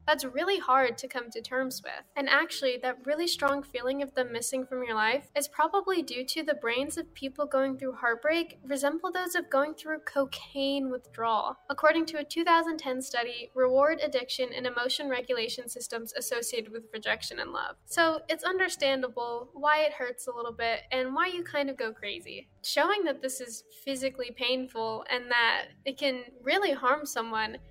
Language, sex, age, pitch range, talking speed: English, female, 10-29, 250-310 Hz, 180 wpm